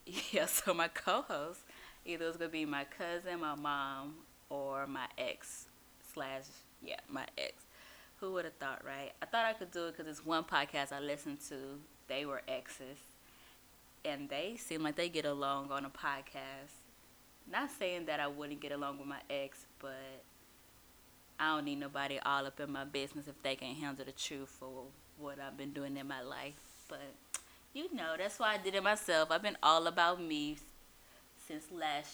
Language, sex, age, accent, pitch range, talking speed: English, female, 20-39, American, 140-195 Hz, 185 wpm